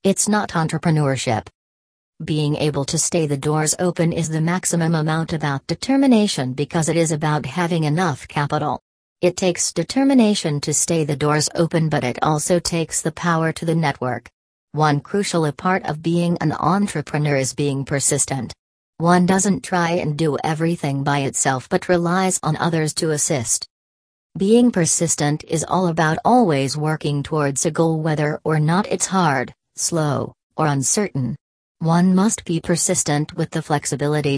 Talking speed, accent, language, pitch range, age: 155 wpm, American, English, 145-175 Hz, 40-59